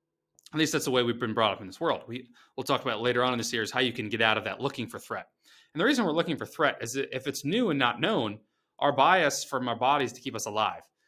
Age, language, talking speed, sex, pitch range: 30-49, English, 300 wpm, male, 115-145 Hz